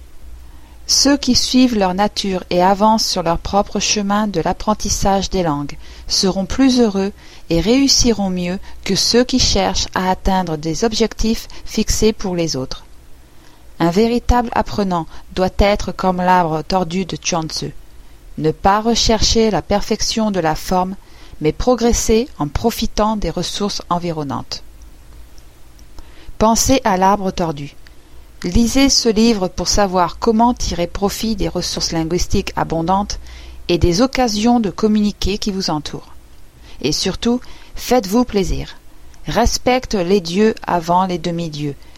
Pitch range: 155-215 Hz